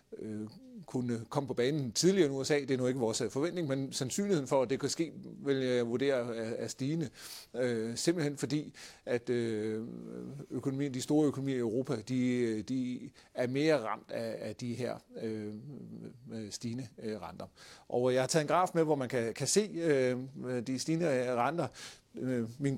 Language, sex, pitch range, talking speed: Danish, male, 125-155 Hz, 160 wpm